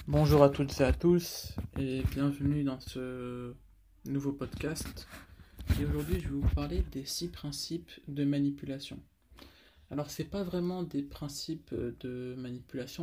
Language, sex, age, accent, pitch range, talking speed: French, male, 20-39, French, 95-145 Hz, 145 wpm